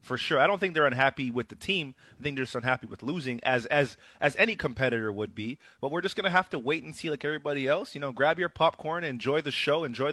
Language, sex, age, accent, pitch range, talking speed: English, male, 30-49, American, 130-160 Hz, 265 wpm